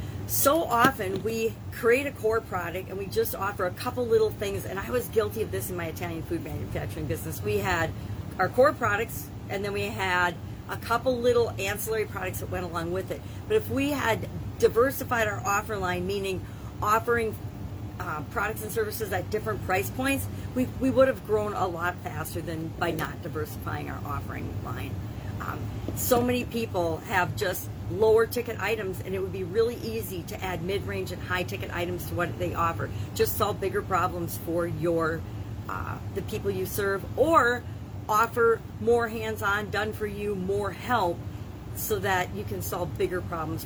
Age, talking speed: 50-69, 180 wpm